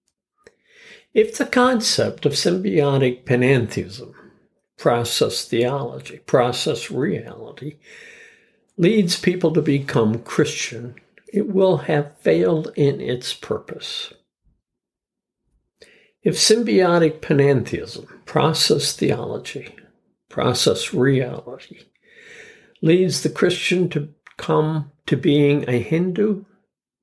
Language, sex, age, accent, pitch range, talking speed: English, male, 60-79, American, 135-205 Hz, 85 wpm